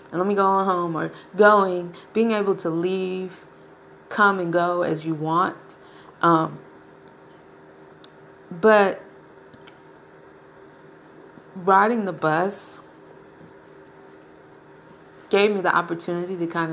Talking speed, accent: 105 wpm, American